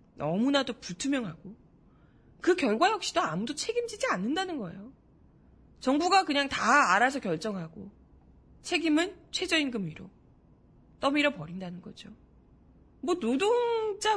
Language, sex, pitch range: Korean, female, 190-310 Hz